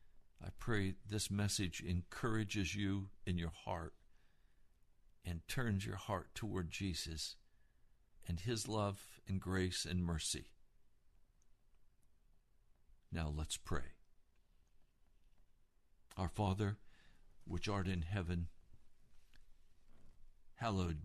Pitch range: 85-105 Hz